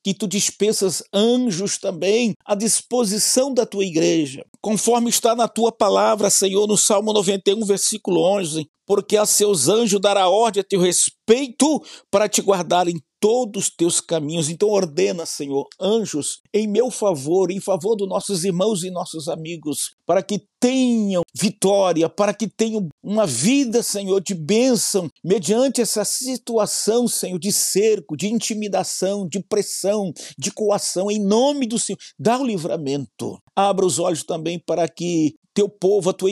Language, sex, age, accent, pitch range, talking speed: Portuguese, male, 50-69, Brazilian, 180-220 Hz, 155 wpm